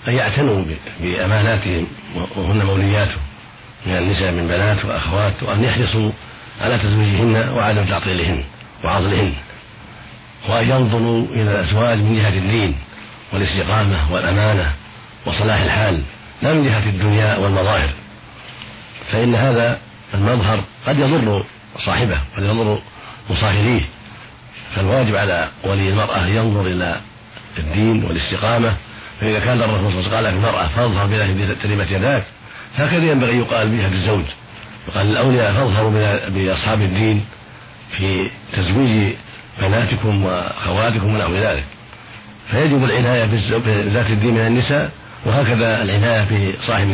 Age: 50-69